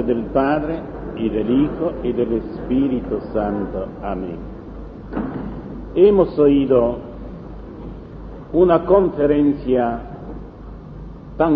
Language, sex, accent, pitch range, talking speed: Spanish, male, Italian, 125-190 Hz, 80 wpm